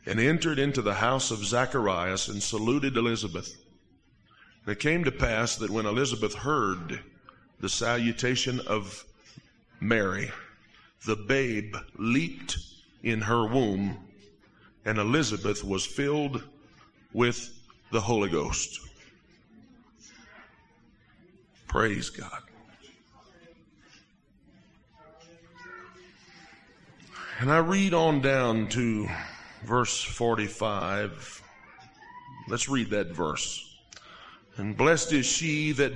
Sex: male